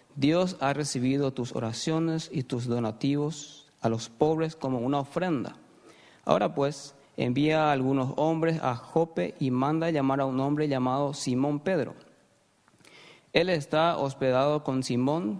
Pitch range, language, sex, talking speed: 130-160 Hz, Spanish, male, 140 wpm